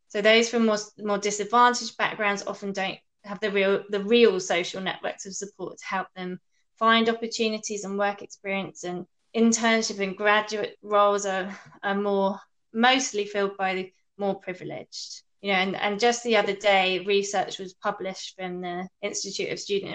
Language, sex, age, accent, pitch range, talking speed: English, female, 20-39, British, 190-215 Hz, 170 wpm